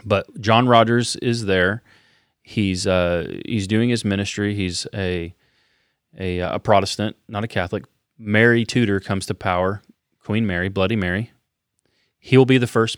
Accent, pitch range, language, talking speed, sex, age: American, 95-115 Hz, English, 155 wpm, male, 30-49